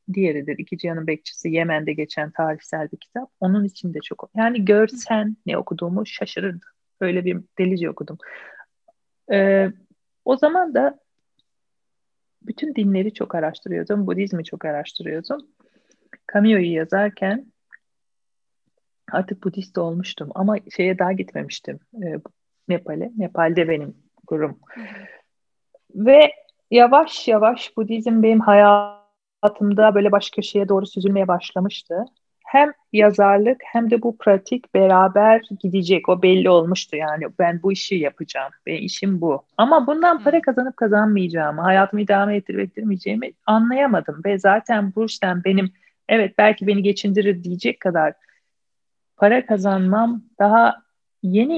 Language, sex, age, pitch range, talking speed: Turkish, female, 40-59, 175-220 Hz, 120 wpm